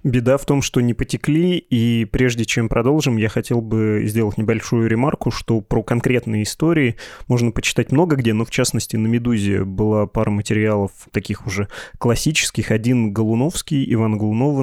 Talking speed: 160 wpm